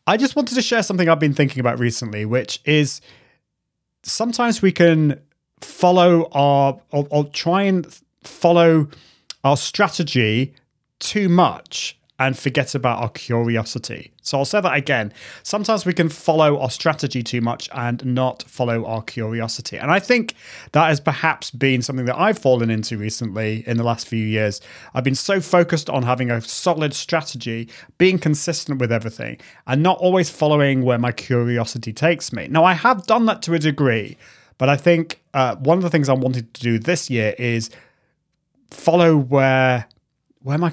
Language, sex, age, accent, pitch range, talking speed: English, male, 30-49, British, 120-165 Hz, 170 wpm